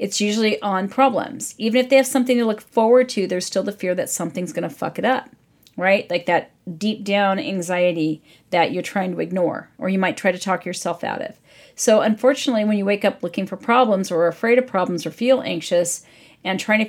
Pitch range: 190-250 Hz